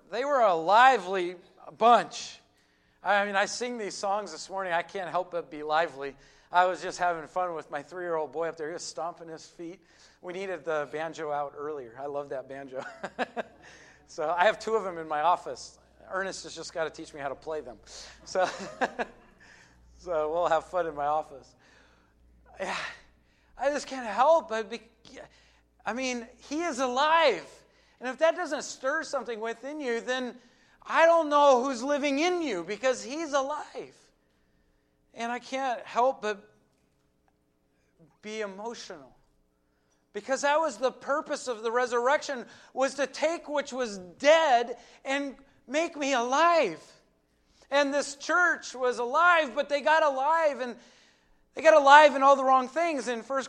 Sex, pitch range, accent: male, 165-275 Hz, American